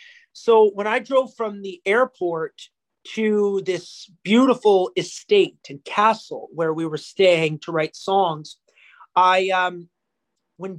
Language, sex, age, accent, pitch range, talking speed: English, male, 30-49, American, 180-230 Hz, 130 wpm